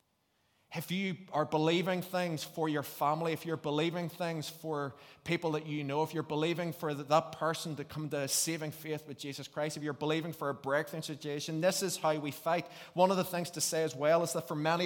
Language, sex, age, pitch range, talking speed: English, male, 20-39, 145-165 Hz, 225 wpm